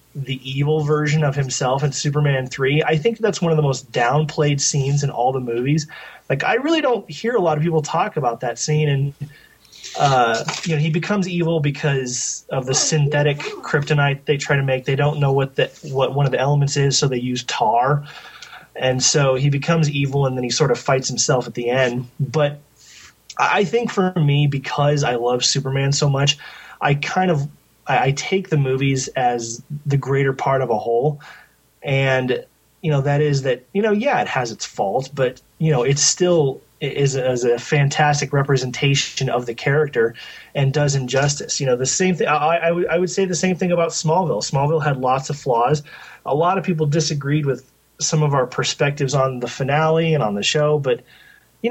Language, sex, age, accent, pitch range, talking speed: English, male, 30-49, American, 135-155 Hz, 200 wpm